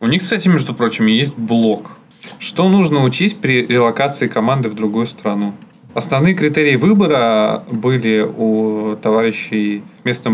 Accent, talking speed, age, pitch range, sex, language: native, 135 wpm, 20-39, 110-140 Hz, male, Russian